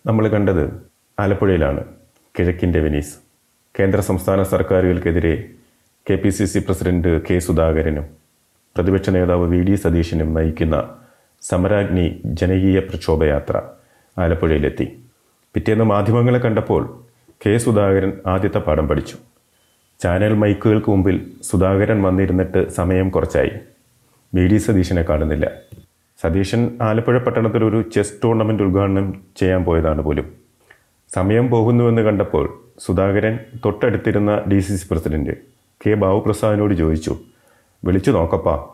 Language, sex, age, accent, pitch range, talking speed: Malayalam, male, 30-49, native, 90-110 Hz, 100 wpm